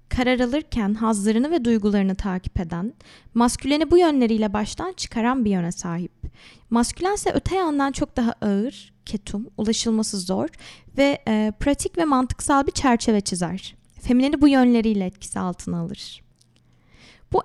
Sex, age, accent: female, 20-39, native